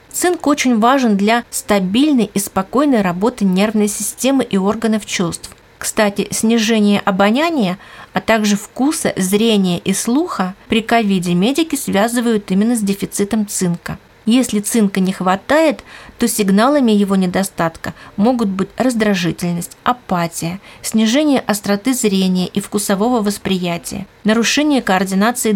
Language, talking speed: Russian, 115 wpm